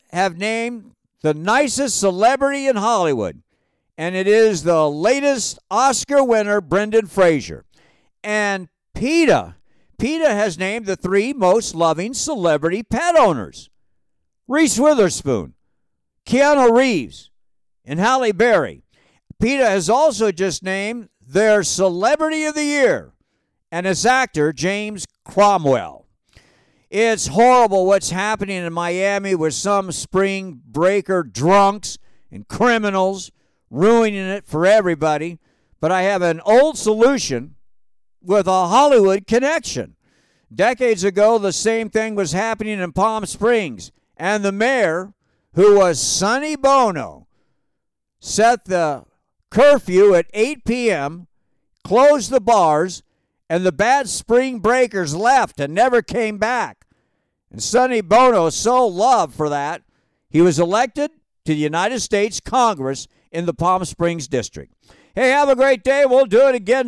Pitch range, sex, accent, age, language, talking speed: 175-245 Hz, male, American, 60-79, English, 125 wpm